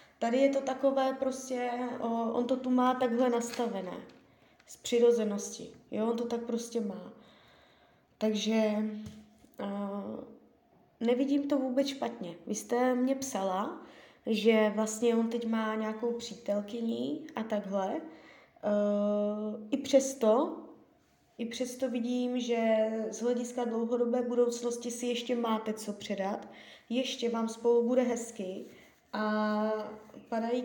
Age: 20-39